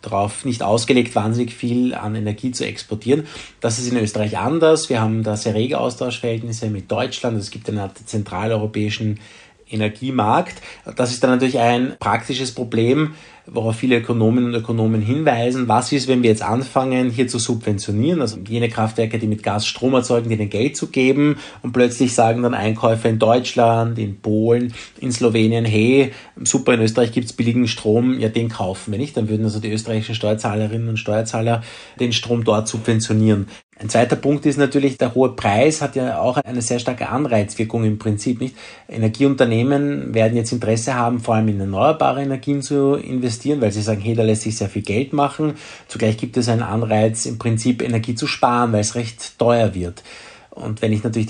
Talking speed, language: 185 wpm, German